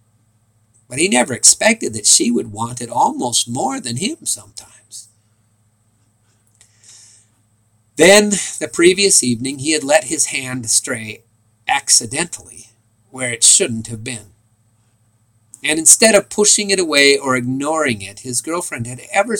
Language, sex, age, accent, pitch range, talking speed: English, male, 50-69, American, 110-150 Hz, 135 wpm